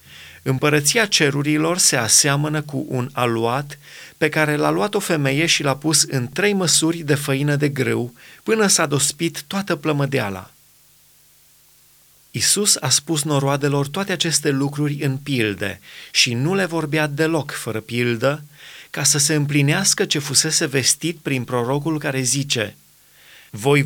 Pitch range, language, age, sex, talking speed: 125-160 Hz, Romanian, 30-49, male, 140 wpm